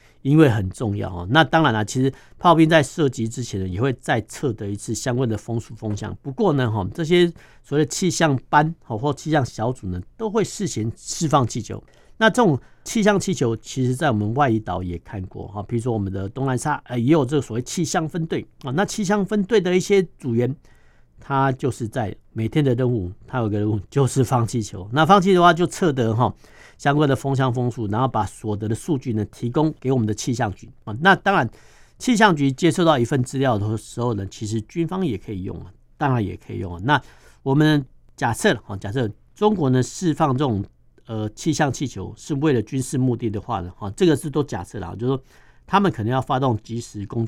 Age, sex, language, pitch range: 50-69, male, Chinese, 110-155 Hz